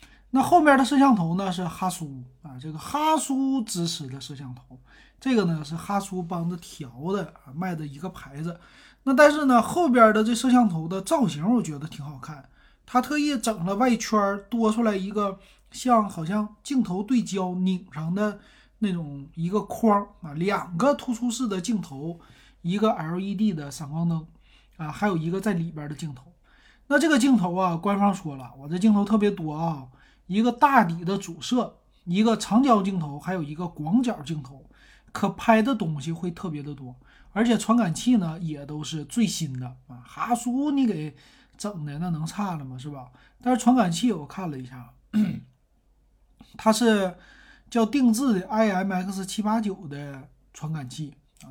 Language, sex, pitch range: Chinese, male, 155-225 Hz